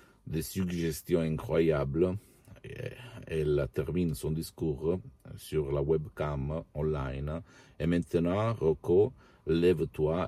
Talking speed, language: 95 wpm, Italian